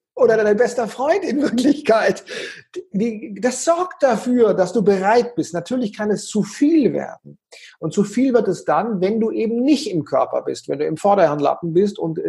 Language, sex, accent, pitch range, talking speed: German, male, German, 155-215 Hz, 185 wpm